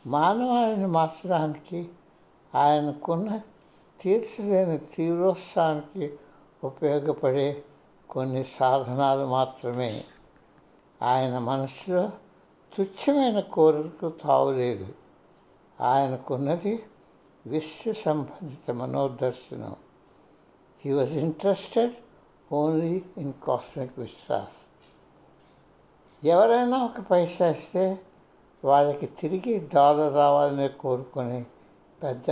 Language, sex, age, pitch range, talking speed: Telugu, male, 60-79, 135-195 Hz, 35 wpm